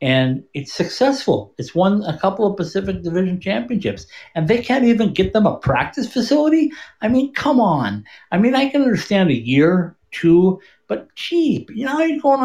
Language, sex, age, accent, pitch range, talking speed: English, male, 60-79, American, 160-220 Hz, 185 wpm